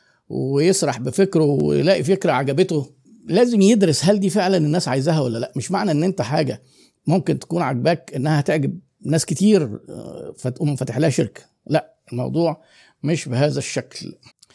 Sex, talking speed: male, 145 wpm